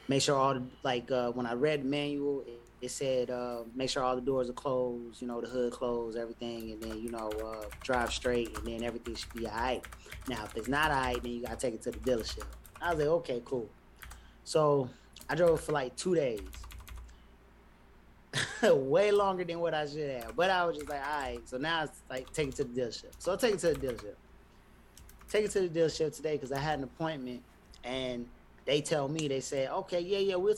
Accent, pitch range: American, 120-155 Hz